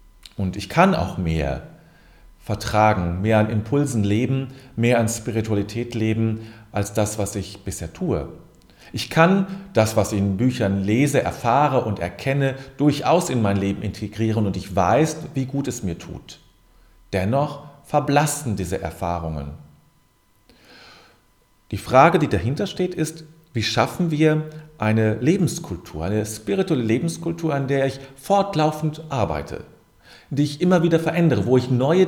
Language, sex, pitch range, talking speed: German, male, 100-145 Hz, 140 wpm